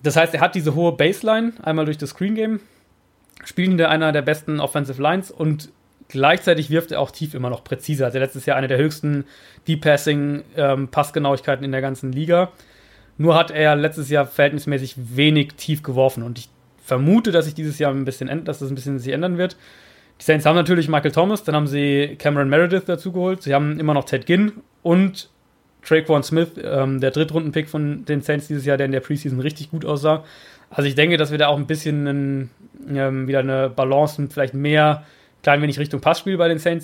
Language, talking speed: German, 205 wpm